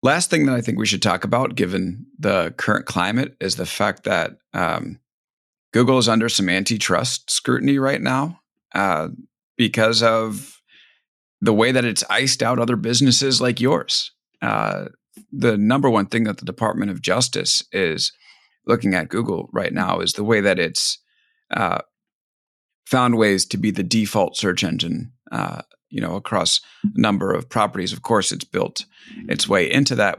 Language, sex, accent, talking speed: English, male, American, 170 wpm